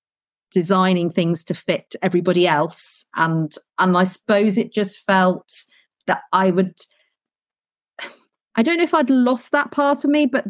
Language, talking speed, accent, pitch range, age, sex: English, 155 wpm, British, 180-235 Hz, 40-59, female